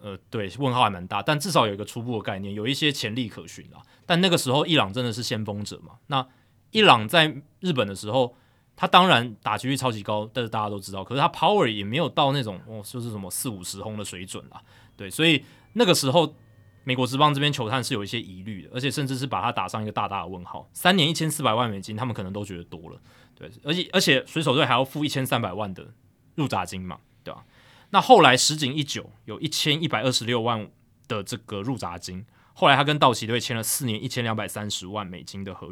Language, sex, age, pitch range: Chinese, male, 20-39, 105-140 Hz